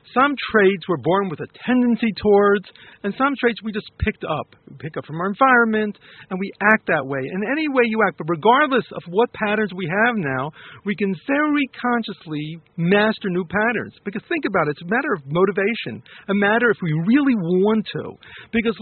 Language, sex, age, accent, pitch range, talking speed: English, male, 50-69, American, 170-235 Hz, 200 wpm